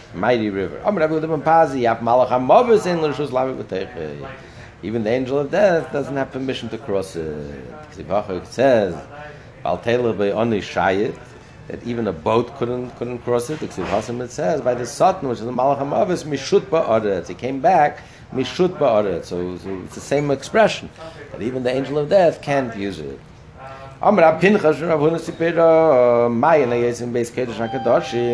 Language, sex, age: English, male, 60-79